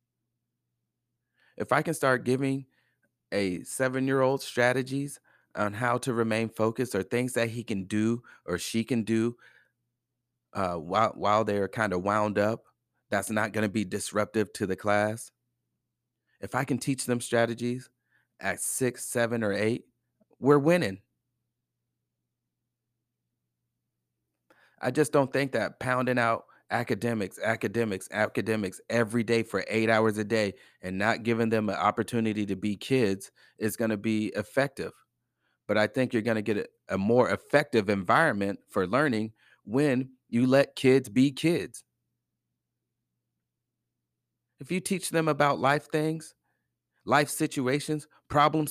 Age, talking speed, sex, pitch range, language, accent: 30-49, 140 wpm, male, 105-130 Hz, English, American